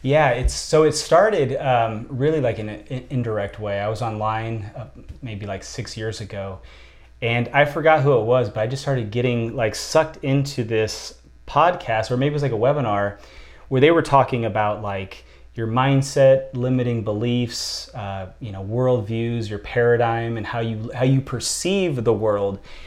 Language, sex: English, male